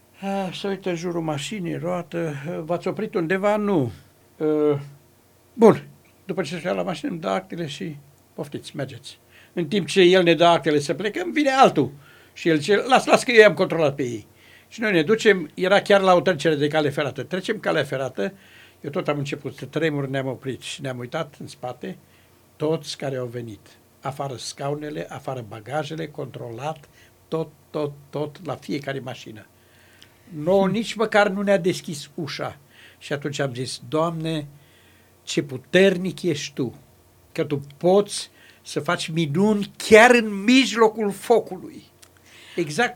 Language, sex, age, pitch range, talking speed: Romanian, male, 60-79, 140-200 Hz, 160 wpm